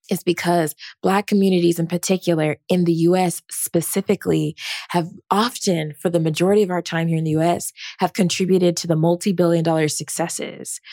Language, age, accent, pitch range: English, 20-39, American, 160-190 Hz